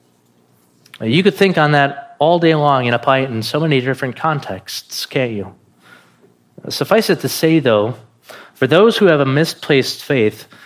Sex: male